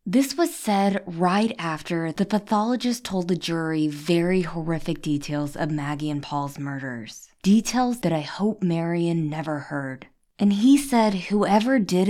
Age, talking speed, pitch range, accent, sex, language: 20-39, 150 wpm, 165-235 Hz, American, female, English